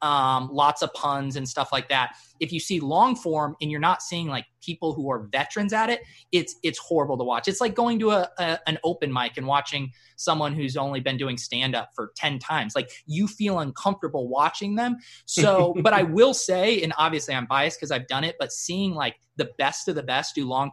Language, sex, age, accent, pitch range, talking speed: English, male, 20-39, American, 130-160 Hz, 230 wpm